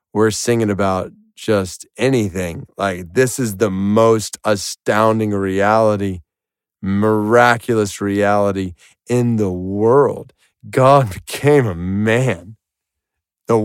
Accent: American